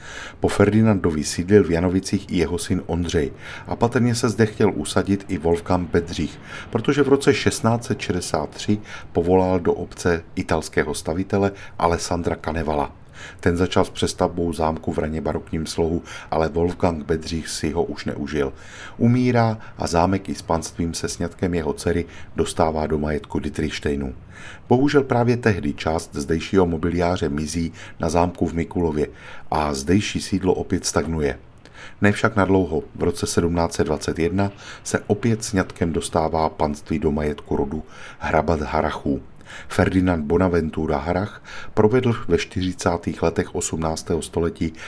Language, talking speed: Czech, 130 wpm